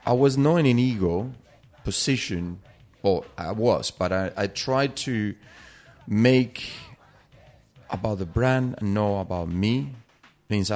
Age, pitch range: 30-49, 95-120 Hz